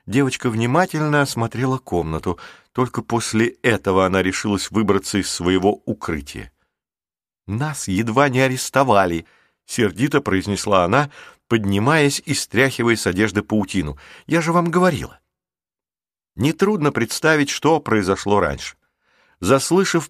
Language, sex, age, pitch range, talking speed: Russian, male, 50-69, 100-140 Hz, 105 wpm